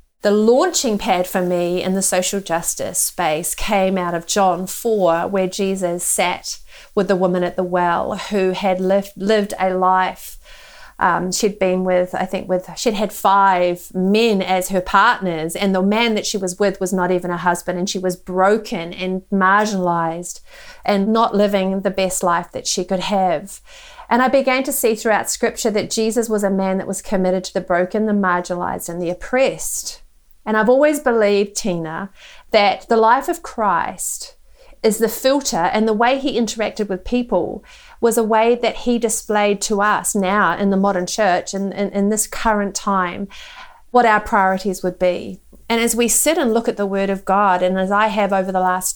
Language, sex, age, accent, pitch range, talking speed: English, female, 40-59, Australian, 185-220 Hz, 190 wpm